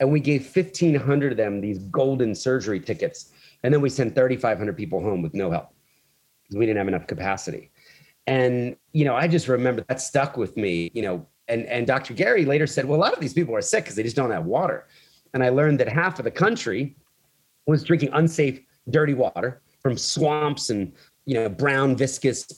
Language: English